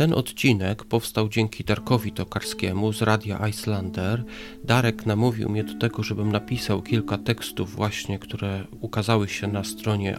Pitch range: 105-125 Hz